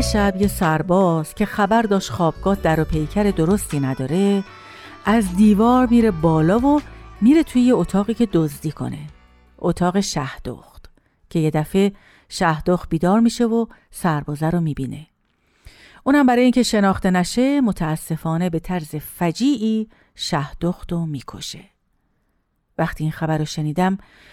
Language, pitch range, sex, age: Persian, 160-220 Hz, female, 50-69